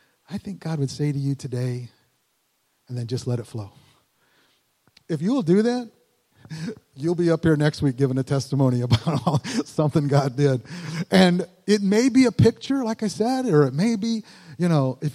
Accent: American